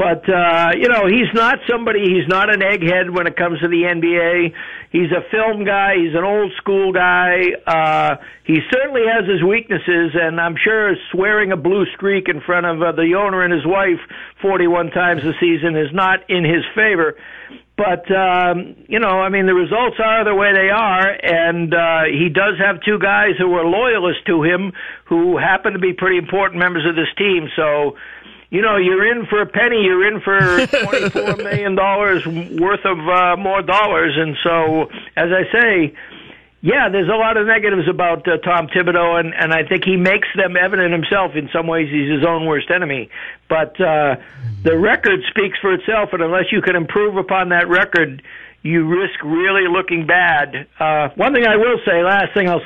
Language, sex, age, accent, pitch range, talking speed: English, male, 60-79, American, 170-200 Hz, 195 wpm